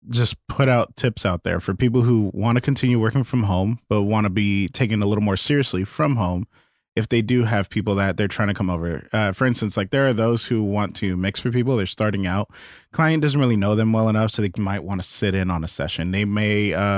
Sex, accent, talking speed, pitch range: male, American, 260 wpm, 95-120 Hz